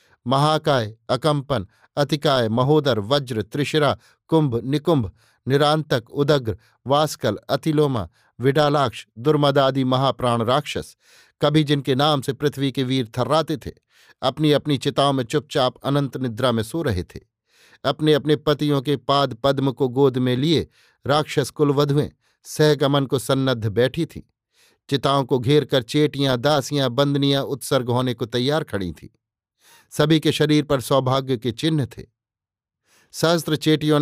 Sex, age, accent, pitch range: male, 50-69, native, 125-145 Hz